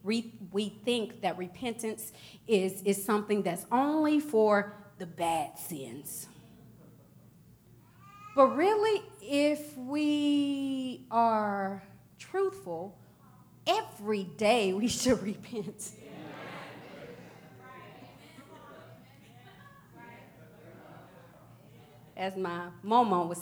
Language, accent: English, American